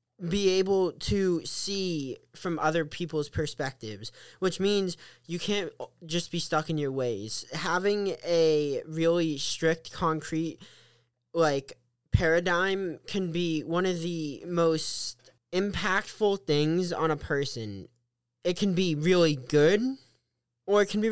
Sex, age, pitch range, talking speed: male, 20-39, 140-170 Hz, 130 wpm